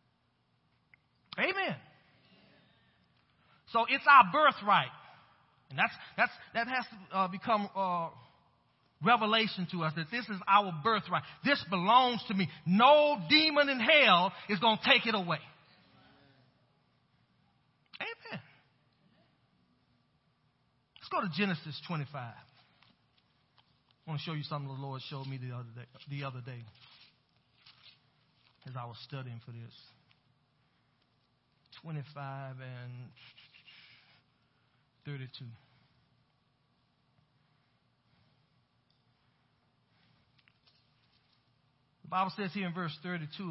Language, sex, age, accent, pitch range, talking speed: English, male, 40-59, American, 130-190 Hz, 105 wpm